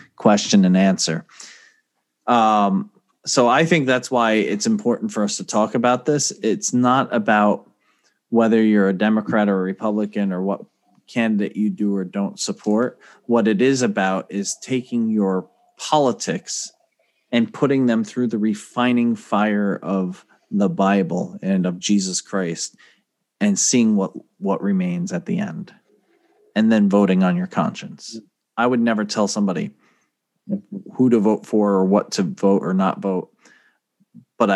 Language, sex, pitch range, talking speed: English, male, 100-130 Hz, 155 wpm